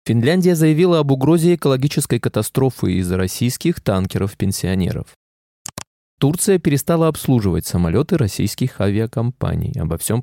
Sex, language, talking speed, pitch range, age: male, Russian, 100 wpm, 105-145 Hz, 20-39